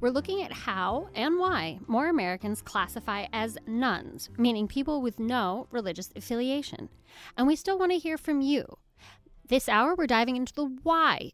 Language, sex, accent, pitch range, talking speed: English, female, American, 190-290 Hz, 170 wpm